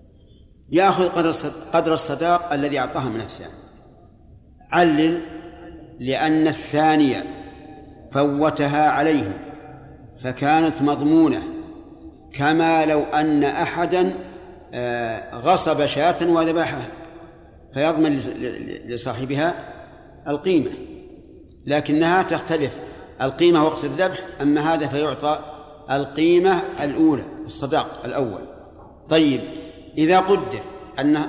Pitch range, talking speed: 145-170 Hz, 75 wpm